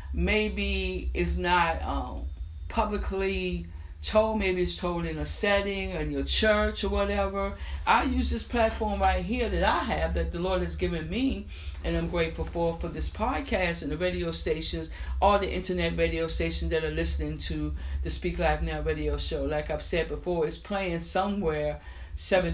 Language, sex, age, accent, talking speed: English, female, 60-79, American, 175 wpm